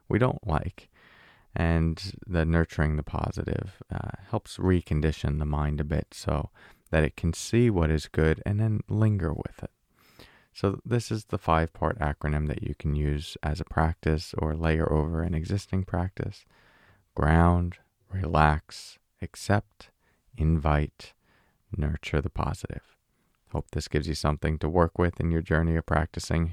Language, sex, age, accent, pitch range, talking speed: English, male, 30-49, American, 80-100 Hz, 150 wpm